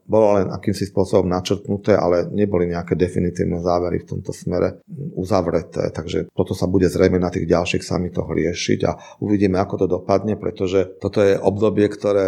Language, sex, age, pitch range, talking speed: Slovak, male, 40-59, 90-100 Hz, 165 wpm